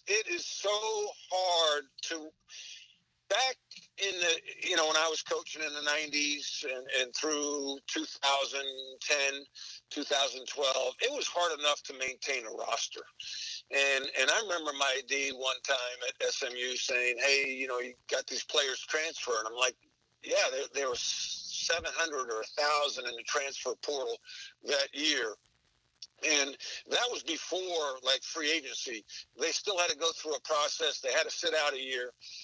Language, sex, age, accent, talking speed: English, male, 50-69, American, 165 wpm